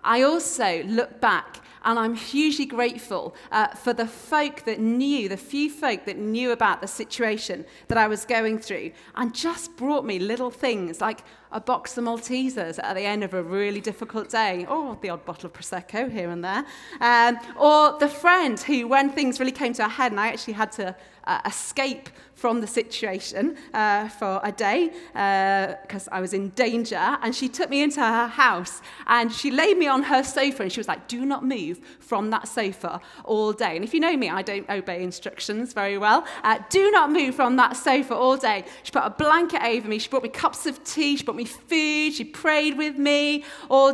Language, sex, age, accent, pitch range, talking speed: English, female, 30-49, British, 200-275 Hz, 210 wpm